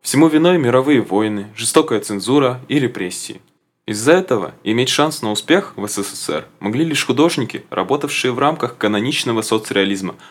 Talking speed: 140 wpm